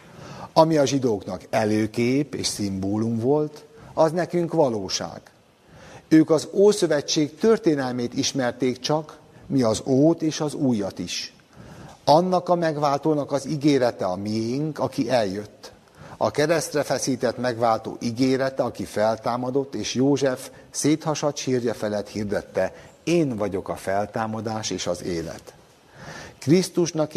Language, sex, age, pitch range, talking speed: Hungarian, male, 60-79, 110-150 Hz, 115 wpm